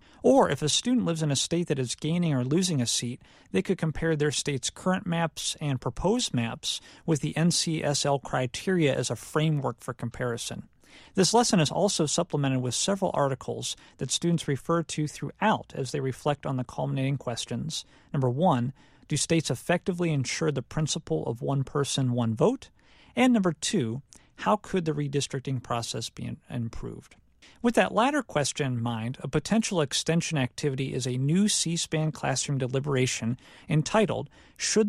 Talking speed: 165 wpm